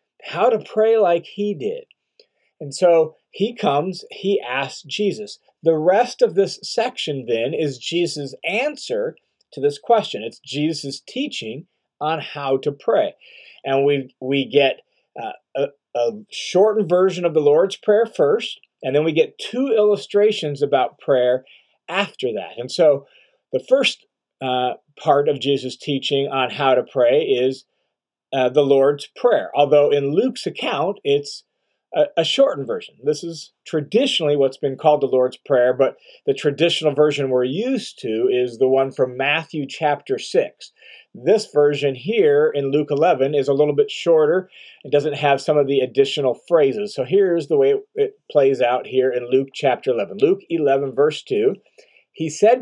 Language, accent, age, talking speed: English, American, 40-59, 165 wpm